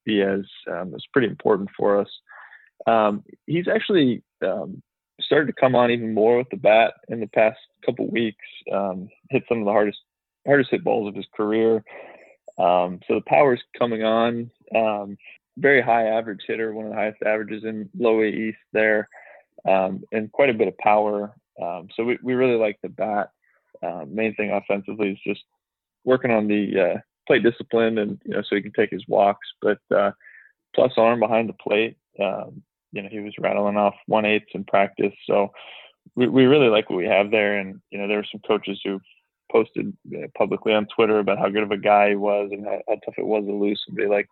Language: English